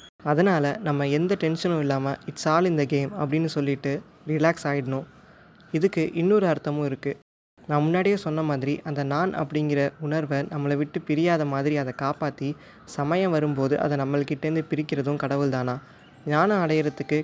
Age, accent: 20-39, native